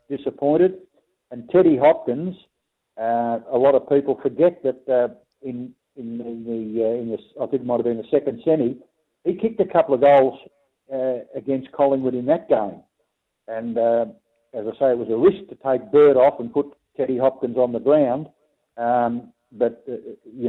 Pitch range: 120-145 Hz